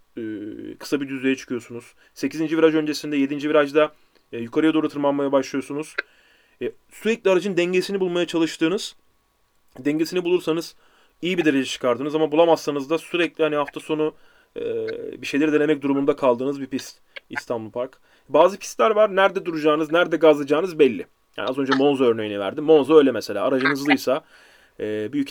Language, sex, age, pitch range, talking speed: Turkish, male, 30-49, 130-165 Hz, 140 wpm